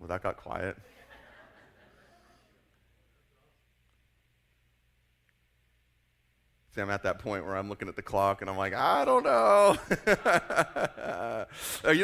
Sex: male